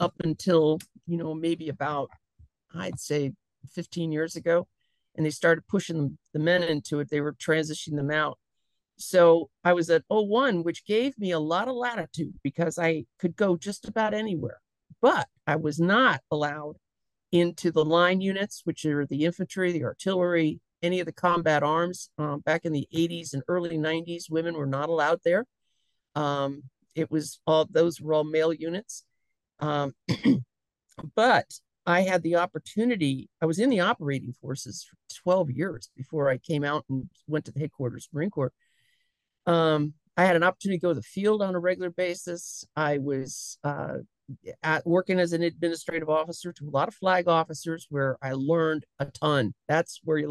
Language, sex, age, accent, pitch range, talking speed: English, male, 50-69, American, 150-180 Hz, 175 wpm